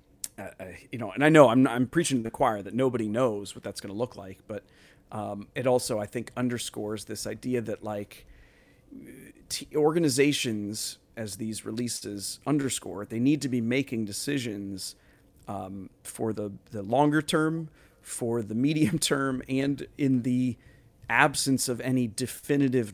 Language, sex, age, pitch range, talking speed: English, male, 40-59, 105-130 Hz, 160 wpm